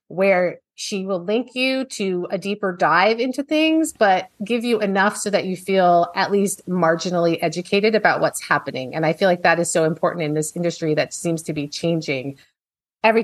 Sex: female